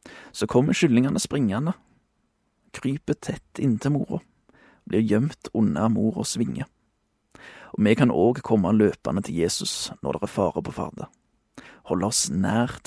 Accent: Swedish